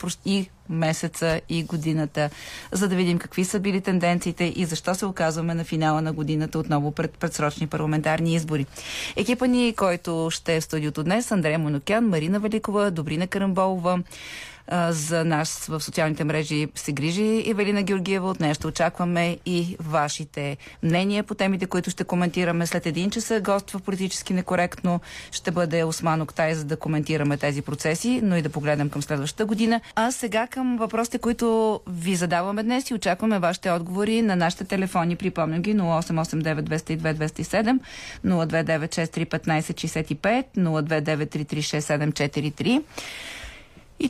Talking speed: 145 wpm